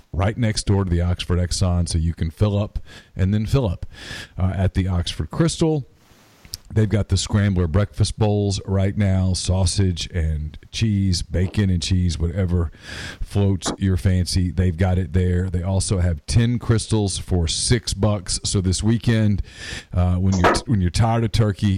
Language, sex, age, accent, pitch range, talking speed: English, male, 40-59, American, 90-105 Hz, 170 wpm